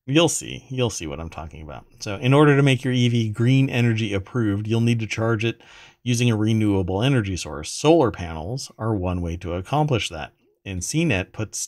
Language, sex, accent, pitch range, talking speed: English, male, American, 95-125 Hz, 200 wpm